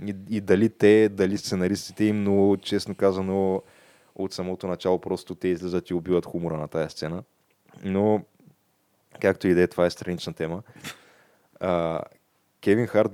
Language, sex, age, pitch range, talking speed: Bulgarian, male, 20-39, 90-105 Hz, 150 wpm